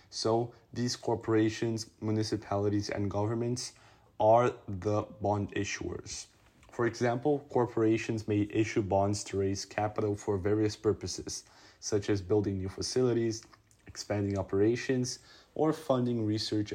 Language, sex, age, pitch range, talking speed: English, male, 20-39, 100-120 Hz, 115 wpm